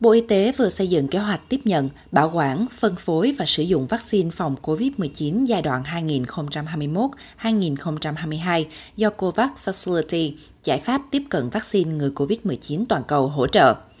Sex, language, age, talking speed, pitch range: female, Vietnamese, 20-39, 160 wpm, 155-220 Hz